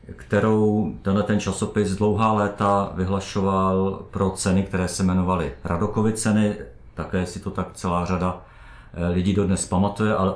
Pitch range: 85-110 Hz